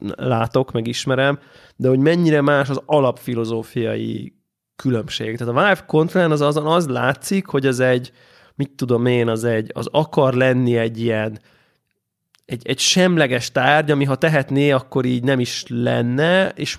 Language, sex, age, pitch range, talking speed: Hungarian, male, 20-39, 120-150 Hz, 150 wpm